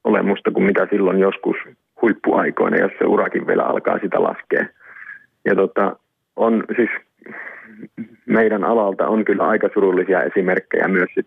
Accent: native